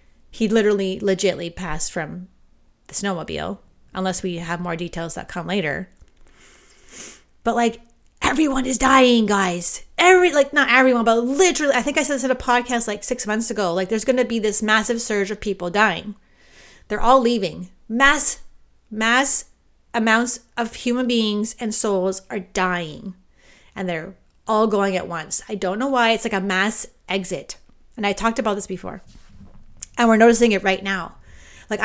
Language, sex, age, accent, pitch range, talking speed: English, female, 30-49, American, 180-235 Hz, 170 wpm